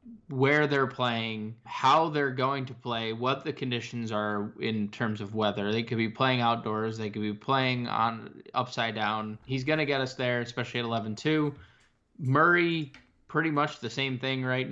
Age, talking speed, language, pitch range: 20-39, 180 wpm, English, 115-135 Hz